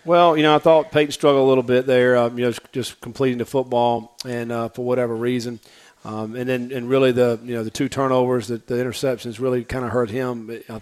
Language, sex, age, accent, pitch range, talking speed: English, male, 40-59, American, 120-130 Hz, 240 wpm